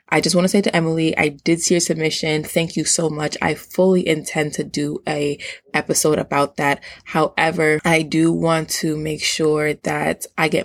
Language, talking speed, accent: English, 195 wpm, American